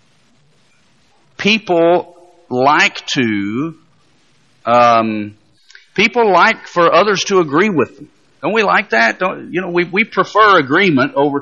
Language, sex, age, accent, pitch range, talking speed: English, male, 50-69, American, 140-230 Hz, 125 wpm